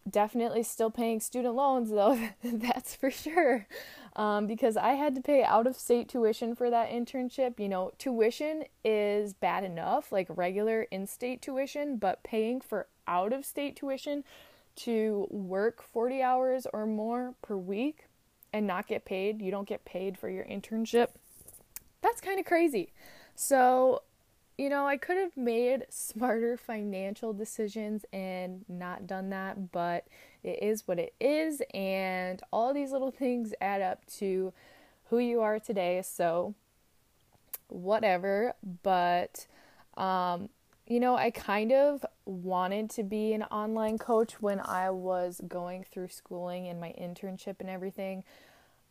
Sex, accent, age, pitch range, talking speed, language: female, American, 20-39, 190-250 Hz, 140 wpm, English